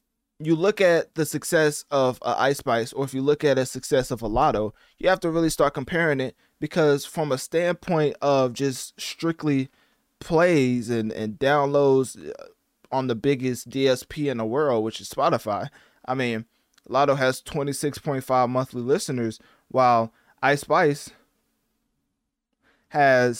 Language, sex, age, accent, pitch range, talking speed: English, male, 20-39, American, 125-160 Hz, 150 wpm